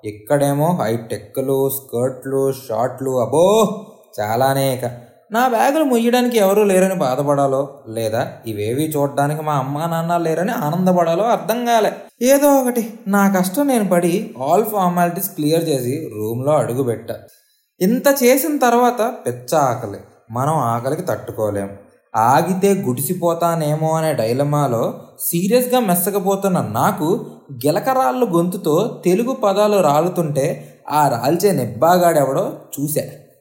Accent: native